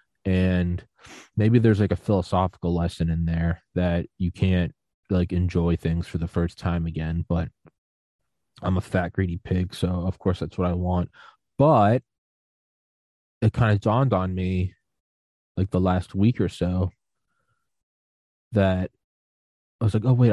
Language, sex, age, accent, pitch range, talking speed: English, male, 20-39, American, 85-100 Hz, 155 wpm